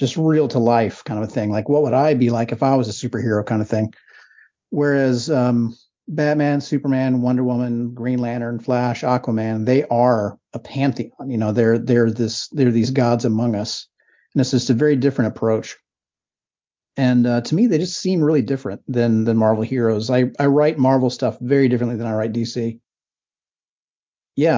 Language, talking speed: English, 190 wpm